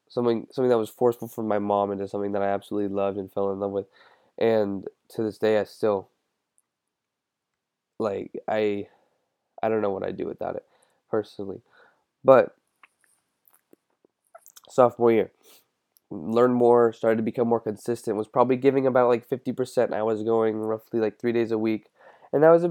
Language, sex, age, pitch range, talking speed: English, male, 20-39, 105-120 Hz, 170 wpm